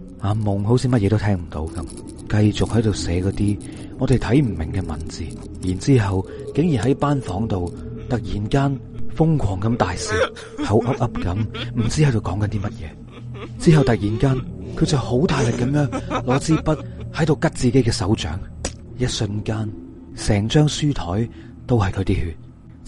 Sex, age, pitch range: male, 30-49, 100-125 Hz